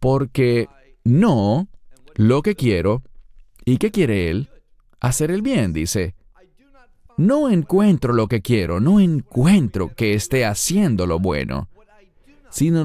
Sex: male